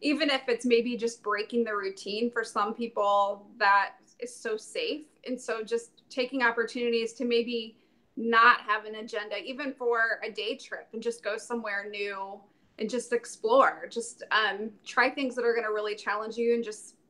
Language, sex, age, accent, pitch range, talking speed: English, female, 20-39, American, 215-250 Hz, 185 wpm